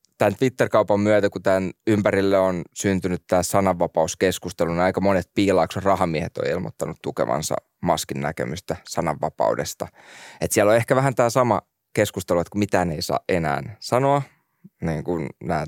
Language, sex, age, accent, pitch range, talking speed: Finnish, male, 20-39, native, 90-110 Hz, 150 wpm